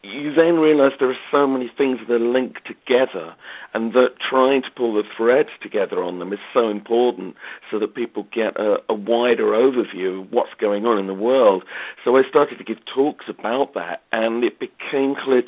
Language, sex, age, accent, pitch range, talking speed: English, male, 50-69, British, 105-130 Hz, 200 wpm